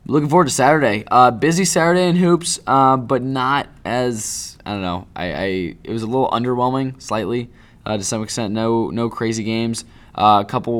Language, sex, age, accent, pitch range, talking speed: English, male, 20-39, American, 100-120 Hz, 195 wpm